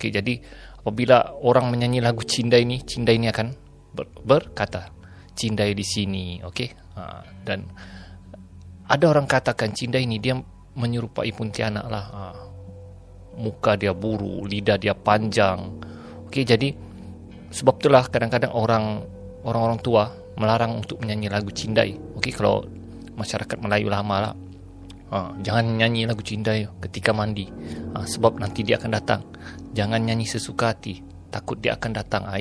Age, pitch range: 30-49, 95-115 Hz